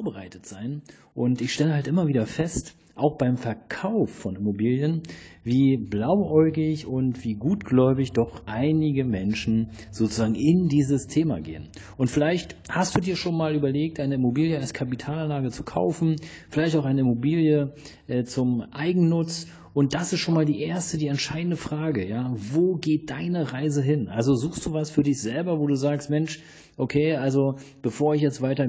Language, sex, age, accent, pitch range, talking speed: German, male, 40-59, German, 120-150 Hz, 165 wpm